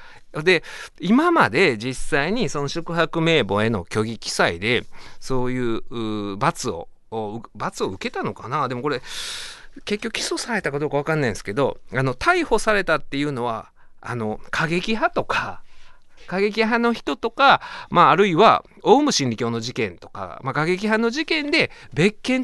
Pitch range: 140-235 Hz